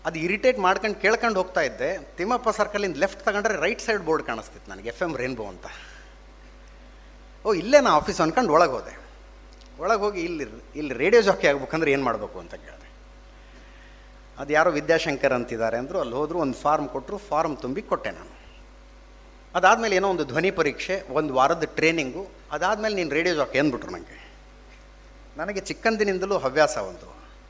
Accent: native